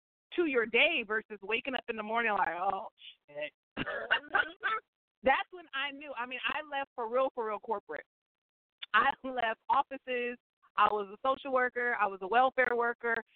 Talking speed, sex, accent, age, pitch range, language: 170 wpm, female, American, 40-59, 190-240 Hz, English